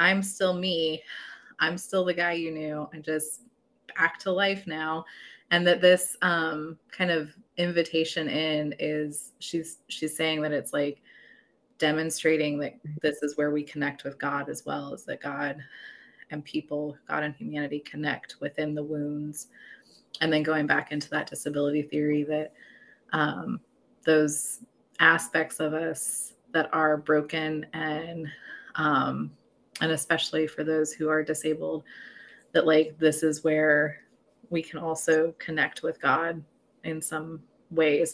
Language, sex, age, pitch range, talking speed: English, female, 20-39, 150-170 Hz, 145 wpm